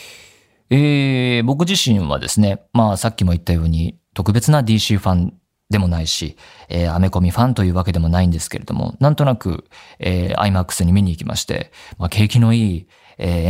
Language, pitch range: Japanese, 90-125 Hz